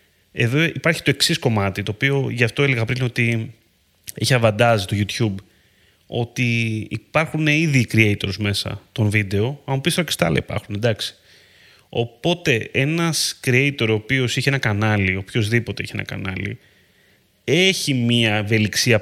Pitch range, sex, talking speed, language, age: 105-135 Hz, male, 145 wpm, Greek, 30-49